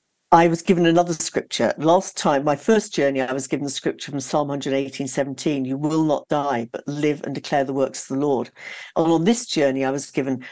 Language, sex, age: English, female, 50-69